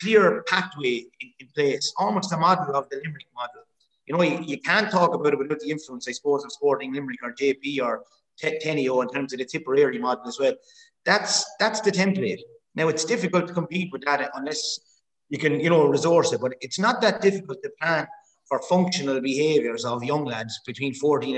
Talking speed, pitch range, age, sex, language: 200 wpm, 140-210 Hz, 30-49, male, English